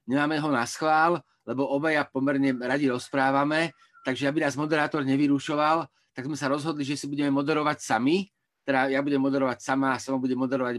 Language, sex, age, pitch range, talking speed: Slovak, male, 30-49, 125-145 Hz, 170 wpm